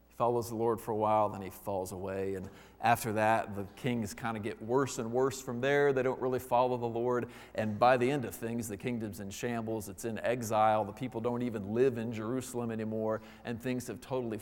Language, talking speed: English, 225 wpm